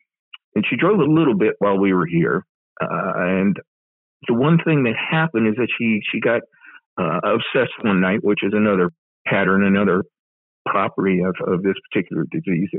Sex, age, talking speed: male, 50-69, 175 wpm